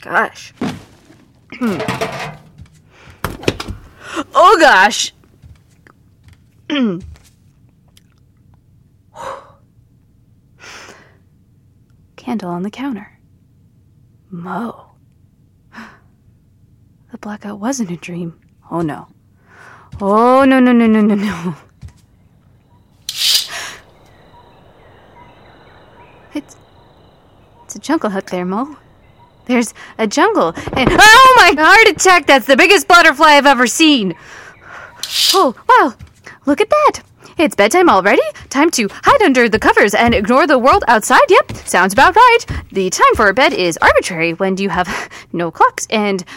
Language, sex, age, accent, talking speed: English, female, 20-39, American, 105 wpm